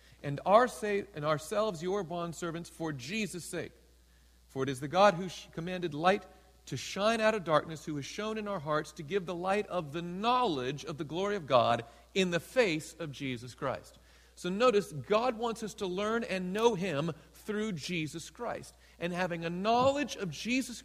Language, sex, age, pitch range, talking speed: English, male, 40-59, 115-185 Hz, 190 wpm